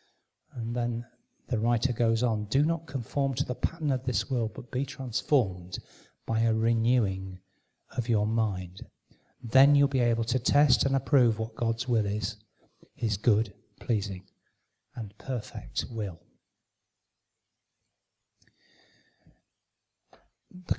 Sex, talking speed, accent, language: male, 125 wpm, British, English